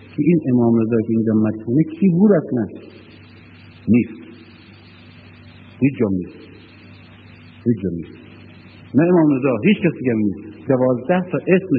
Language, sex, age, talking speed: Persian, male, 60-79, 100 wpm